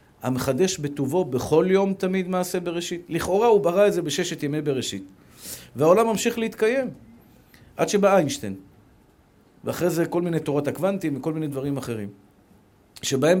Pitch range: 145-200 Hz